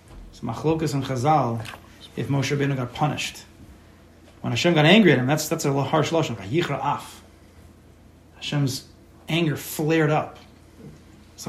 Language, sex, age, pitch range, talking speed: English, male, 30-49, 105-160 Hz, 125 wpm